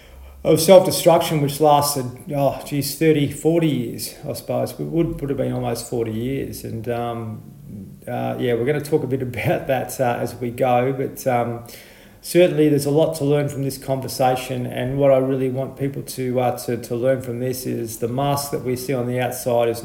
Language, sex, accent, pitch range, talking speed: English, male, Australian, 120-140 Hz, 205 wpm